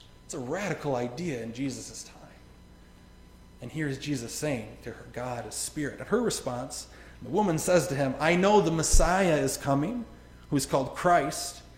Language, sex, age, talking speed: English, male, 30-49, 175 wpm